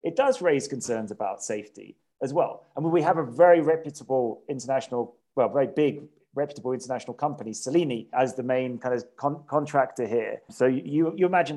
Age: 30-49